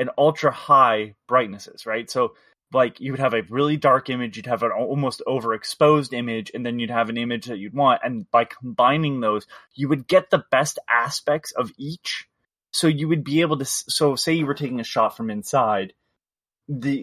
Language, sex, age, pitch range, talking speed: English, male, 20-39, 115-145 Hz, 195 wpm